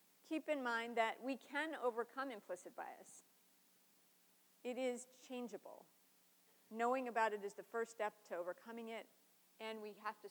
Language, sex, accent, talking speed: English, female, American, 150 wpm